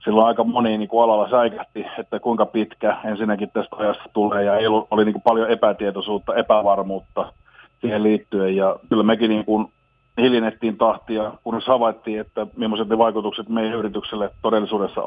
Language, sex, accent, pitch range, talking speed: Finnish, male, native, 100-115 Hz, 145 wpm